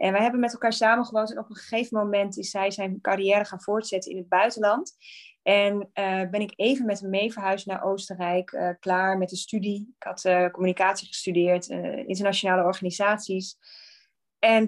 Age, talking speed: 20-39, 185 wpm